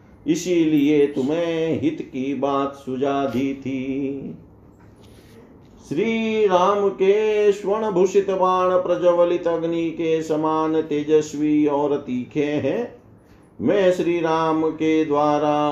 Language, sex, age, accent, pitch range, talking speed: Hindi, male, 50-69, native, 145-180 Hz, 105 wpm